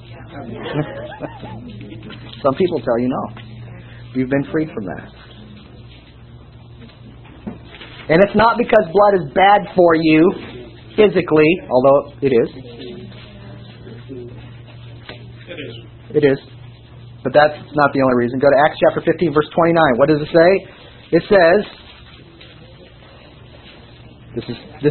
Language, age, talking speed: English, 40-59, 110 wpm